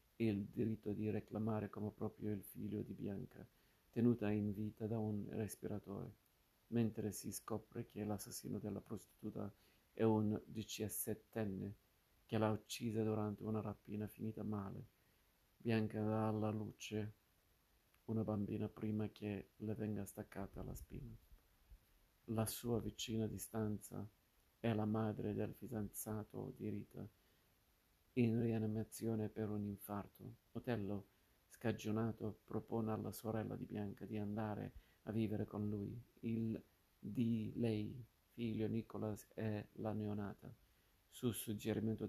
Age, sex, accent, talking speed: 50-69, male, native, 125 wpm